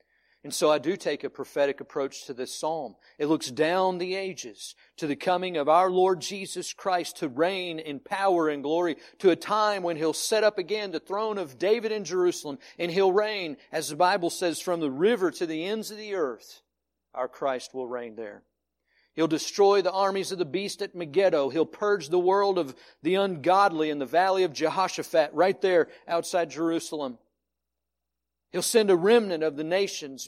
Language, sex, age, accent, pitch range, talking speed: English, male, 50-69, American, 140-195 Hz, 190 wpm